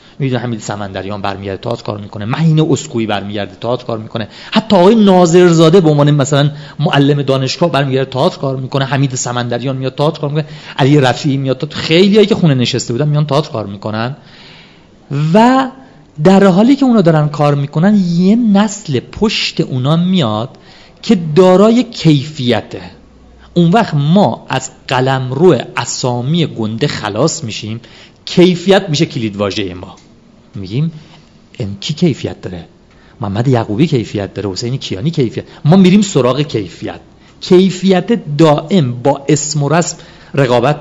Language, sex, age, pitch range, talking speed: Persian, male, 40-59, 120-175 Hz, 145 wpm